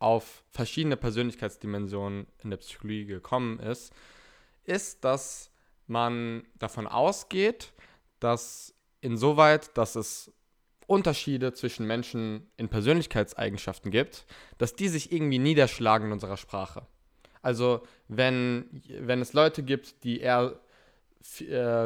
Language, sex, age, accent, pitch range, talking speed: German, male, 20-39, German, 110-130 Hz, 105 wpm